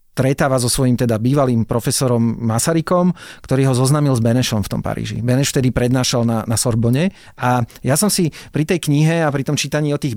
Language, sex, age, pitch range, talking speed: Slovak, male, 40-59, 125-150 Hz, 200 wpm